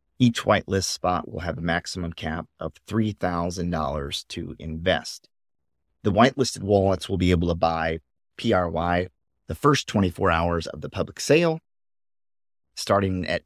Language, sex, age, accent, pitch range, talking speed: English, male, 30-49, American, 85-100 Hz, 140 wpm